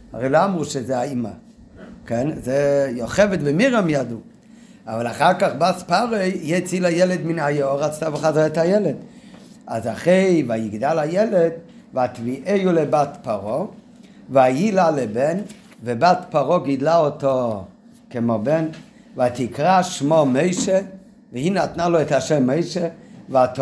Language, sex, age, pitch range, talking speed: Hebrew, male, 50-69, 140-195 Hz, 125 wpm